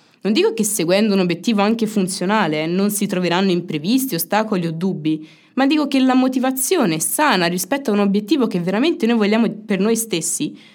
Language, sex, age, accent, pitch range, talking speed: Italian, female, 20-39, native, 175-235 Hz, 185 wpm